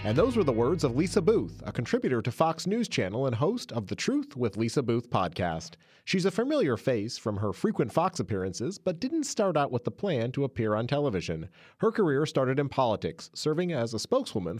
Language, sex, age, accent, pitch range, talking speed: English, male, 30-49, American, 105-155 Hz, 215 wpm